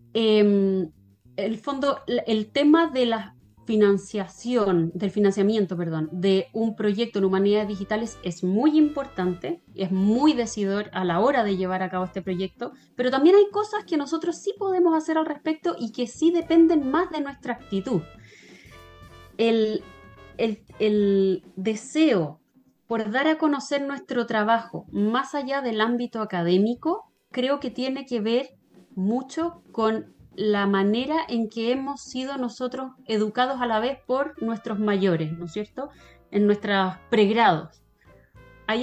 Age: 20-39